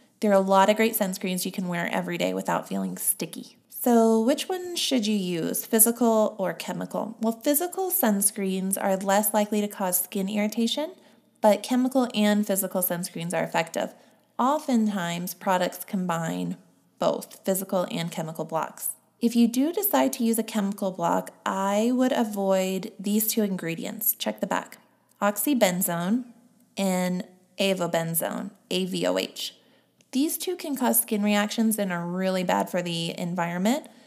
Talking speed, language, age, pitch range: 150 wpm, English, 20-39, 185-230 Hz